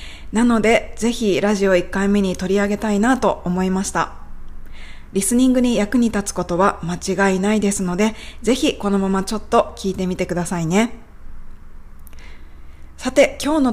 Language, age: Japanese, 20-39